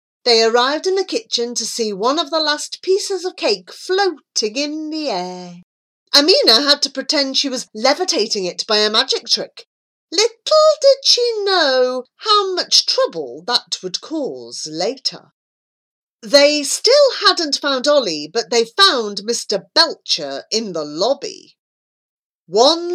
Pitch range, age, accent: 205-315 Hz, 40-59, British